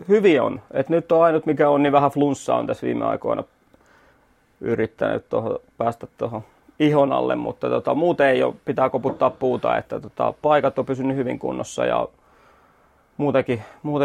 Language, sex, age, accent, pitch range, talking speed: Finnish, male, 30-49, native, 125-145 Hz, 160 wpm